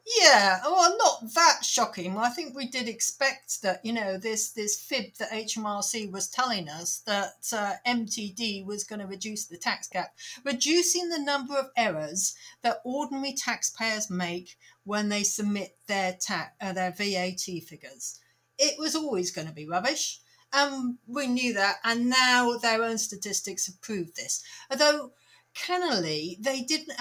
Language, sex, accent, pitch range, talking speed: English, female, British, 190-245 Hz, 160 wpm